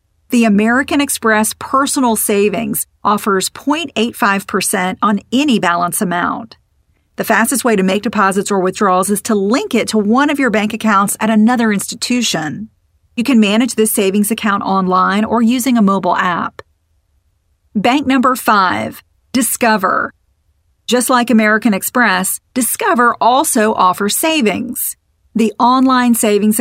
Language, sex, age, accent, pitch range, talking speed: English, female, 40-59, American, 195-245 Hz, 135 wpm